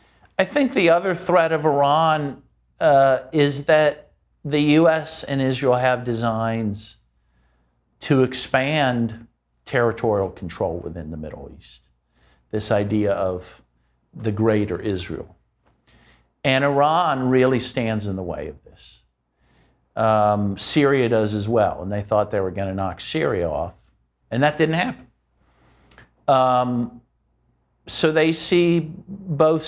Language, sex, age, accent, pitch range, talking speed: English, male, 50-69, American, 105-155 Hz, 125 wpm